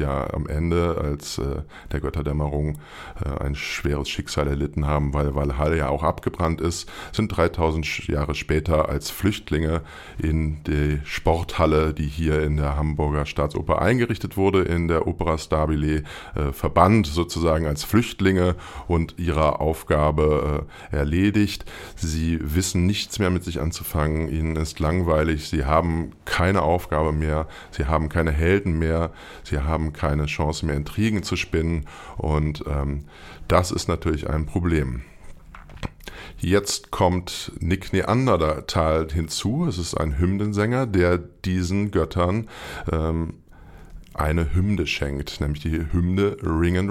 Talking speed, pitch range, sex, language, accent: 135 wpm, 75-90 Hz, male, German, German